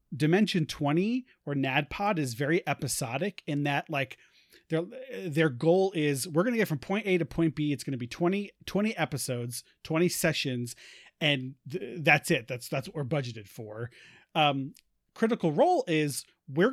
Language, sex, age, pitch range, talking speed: English, male, 30-49, 135-180 Hz, 170 wpm